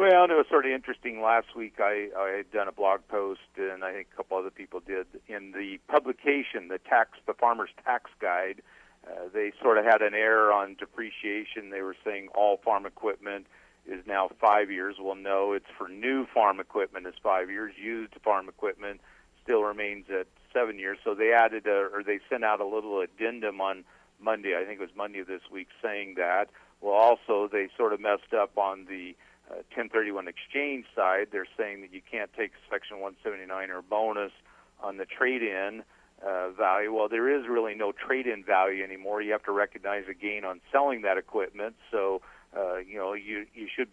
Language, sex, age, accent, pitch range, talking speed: English, male, 50-69, American, 95-110 Hz, 195 wpm